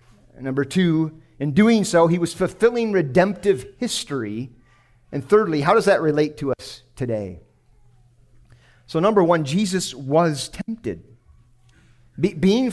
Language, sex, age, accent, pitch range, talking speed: English, male, 40-59, American, 120-205 Hz, 125 wpm